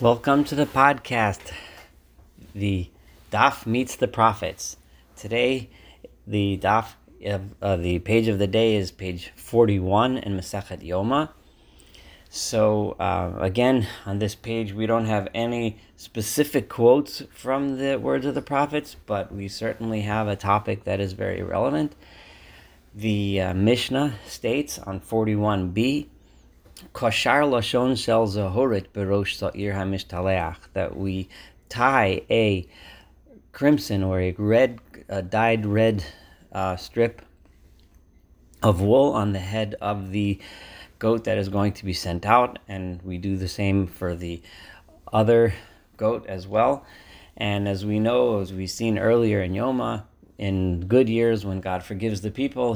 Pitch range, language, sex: 95-115 Hz, English, male